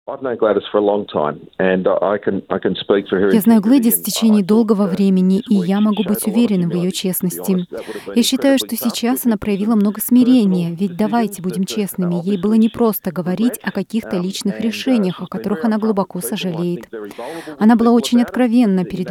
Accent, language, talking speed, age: native, Russian, 145 wpm, 30-49